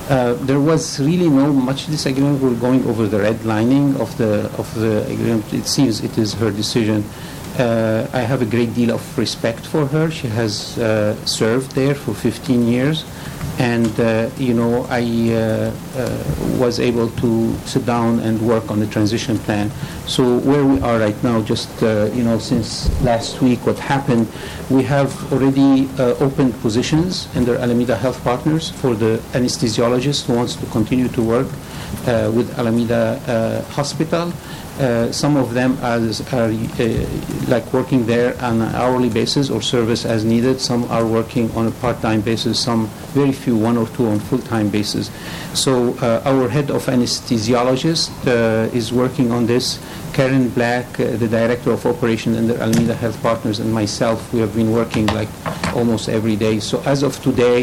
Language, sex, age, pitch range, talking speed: English, male, 50-69, 115-130 Hz, 175 wpm